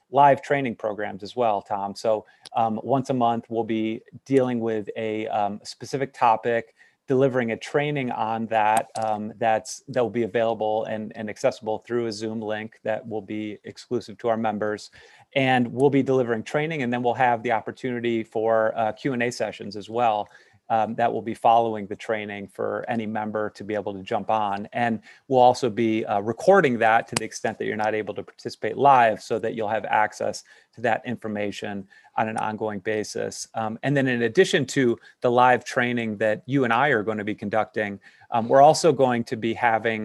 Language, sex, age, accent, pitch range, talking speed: English, male, 30-49, American, 110-125 Hz, 195 wpm